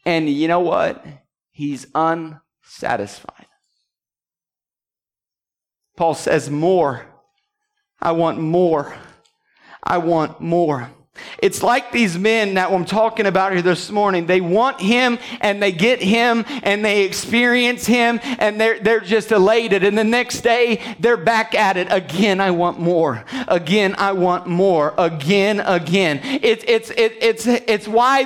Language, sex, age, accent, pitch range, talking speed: English, male, 40-59, American, 185-255 Hz, 140 wpm